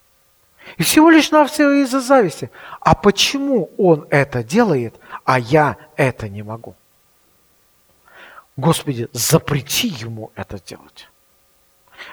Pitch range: 135-220 Hz